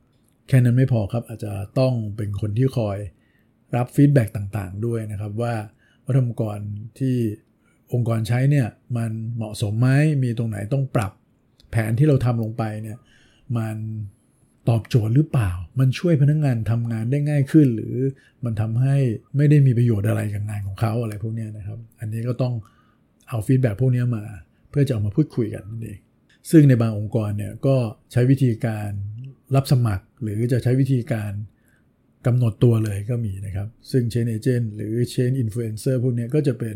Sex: male